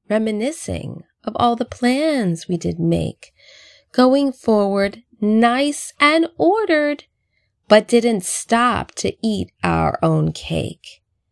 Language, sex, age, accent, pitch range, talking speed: English, female, 20-39, American, 170-265 Hz, 110 wpm